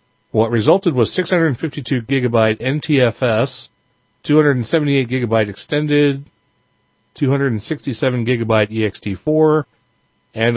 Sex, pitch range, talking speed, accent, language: male, 105-135 Hz, 75 wpm, American, English